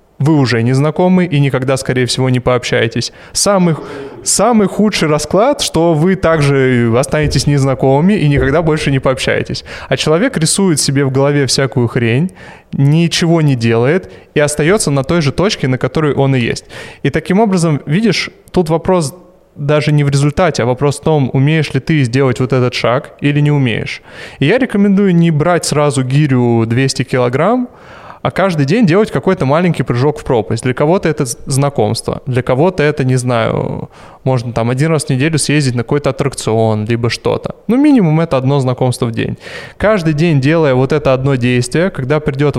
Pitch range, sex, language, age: 130-165 Hz, male, Russian, 20-39